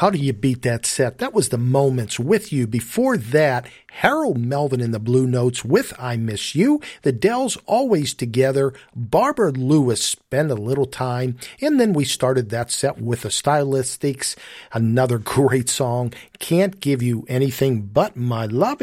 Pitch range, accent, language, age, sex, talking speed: 125-180 Hz, American, English, 50-69, male, 170 wpm